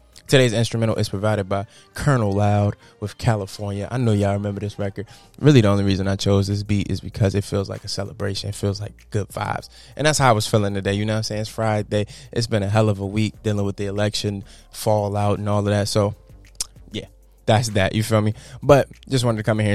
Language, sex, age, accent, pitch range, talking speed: English, male, 20-39, American, 100-115 Hz, 240 wpm